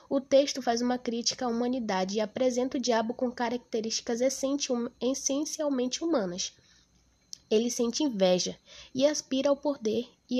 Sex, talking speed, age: female, 135 wpm, 10-29